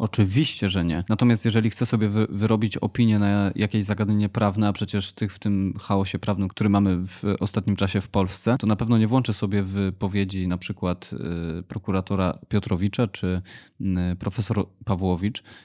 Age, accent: 20-39, native